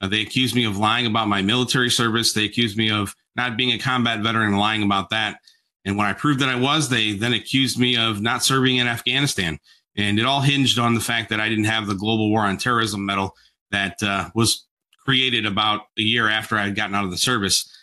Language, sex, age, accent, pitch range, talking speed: English, male, 40-59, American, 105-125 Hz, 235 wpm